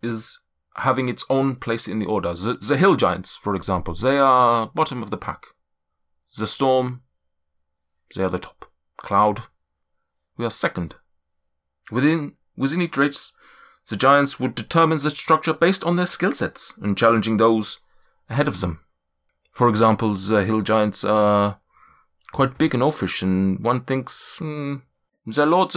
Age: 30-49